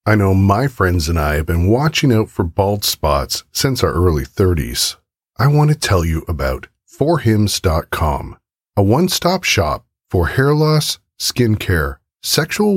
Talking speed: 155 wpm